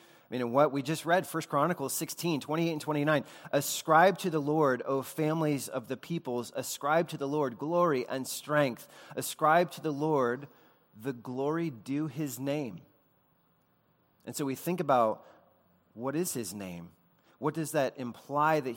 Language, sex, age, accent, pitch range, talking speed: English, male, 30-49, American, 120-150 Hz, 165 wpm